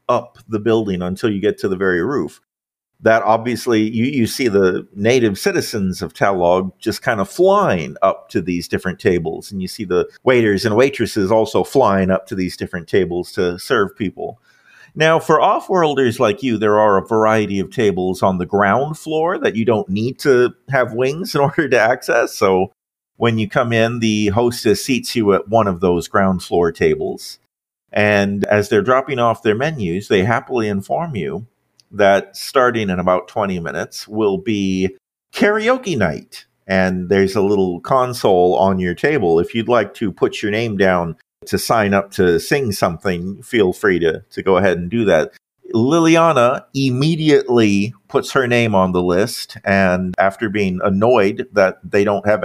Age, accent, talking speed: 50-69, American, 180 wpm